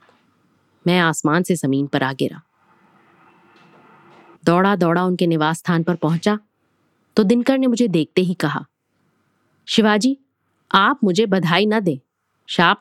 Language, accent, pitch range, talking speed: Hindi, native, 155-205 Hz, 130 wpm